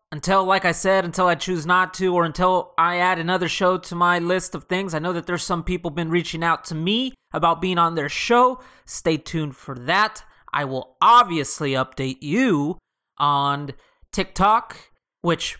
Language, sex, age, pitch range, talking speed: English, male, 30-49, 155-195 Hz, 185 wpm